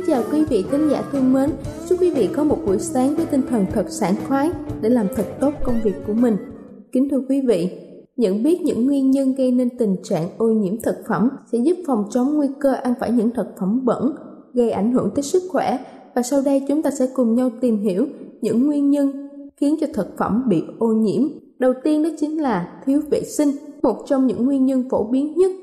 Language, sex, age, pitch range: Thai, female, 20-39, 235-285 Hz